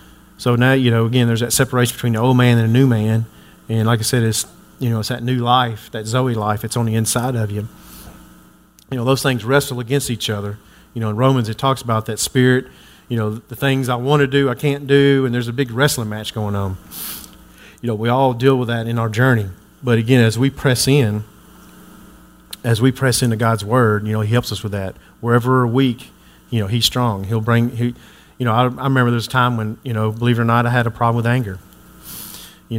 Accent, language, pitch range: American, English, 115-130 Hz